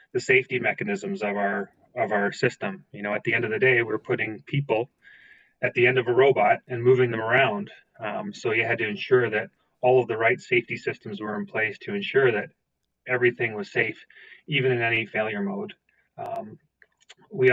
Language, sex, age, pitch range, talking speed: English, male, 30-49, 115-155 Hz, 195 wpm